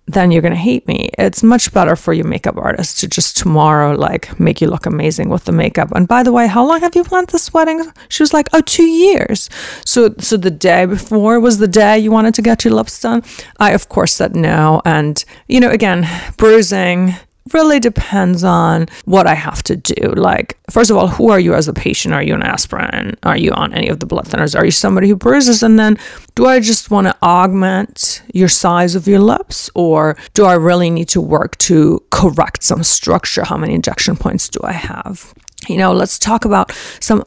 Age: 30-49